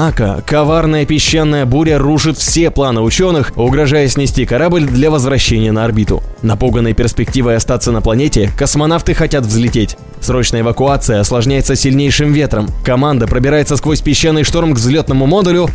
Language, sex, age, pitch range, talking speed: Russian, male, 20-39, 120-170 Hz, 135 wpm